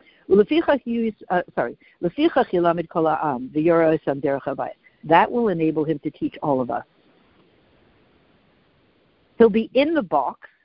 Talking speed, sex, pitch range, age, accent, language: 90 wpm, female, 150-210 Hz, 60-79, American, English